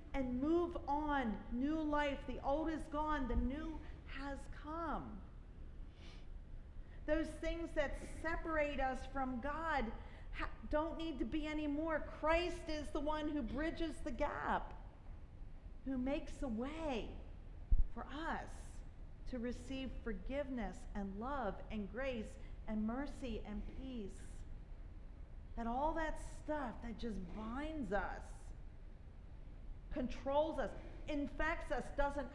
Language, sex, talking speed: English, female, 115 wpm